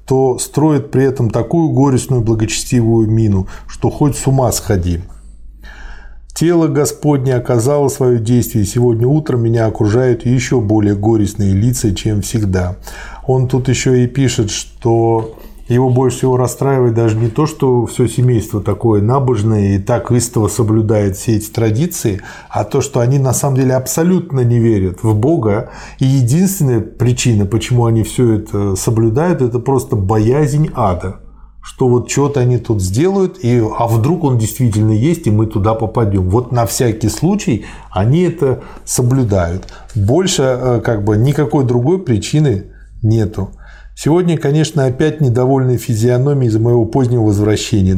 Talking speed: 145 wpm